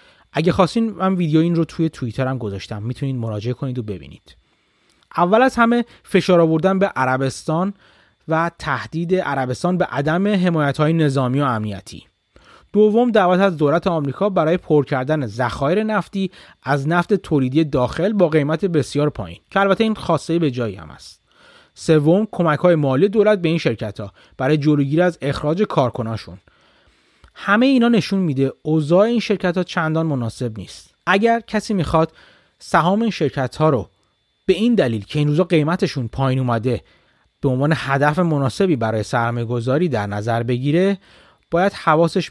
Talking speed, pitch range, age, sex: 155 wpm, 125-180 Hz, 30-49, male